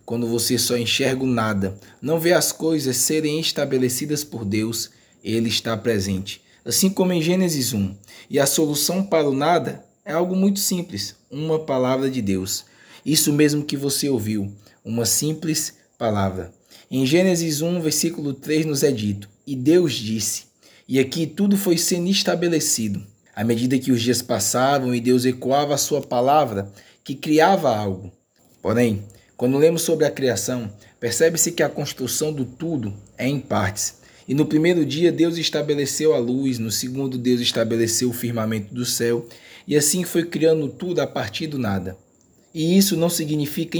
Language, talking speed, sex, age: Portuguese, 165 wpm, male, 20-39